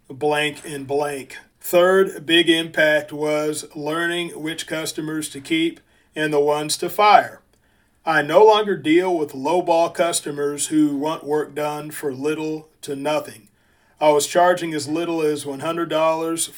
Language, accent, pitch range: English, American, 145-165 Hz